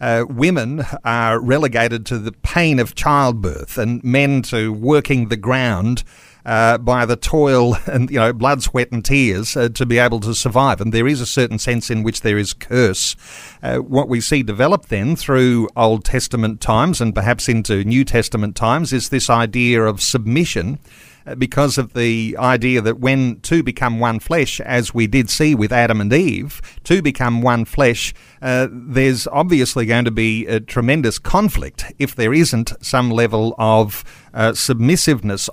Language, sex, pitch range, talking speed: English, male, 110-135 Hz, 175 wpm